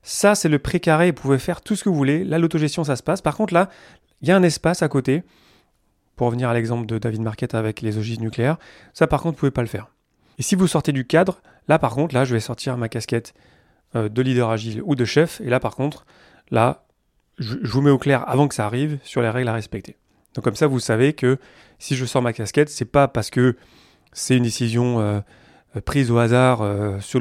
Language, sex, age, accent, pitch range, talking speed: French, male, 30-49, French, 115-150 Hz, 250 wpm